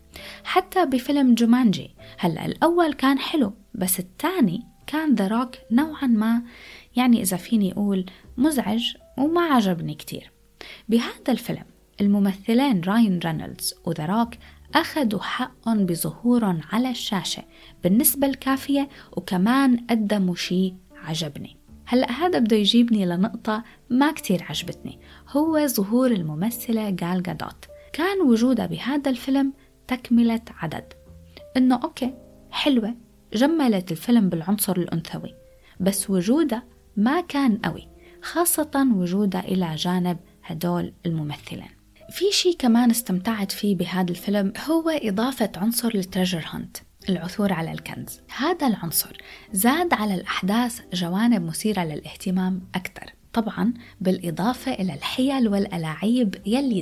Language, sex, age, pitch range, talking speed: Arabic, female, 20-39, 185-255 Hz, 110 wpm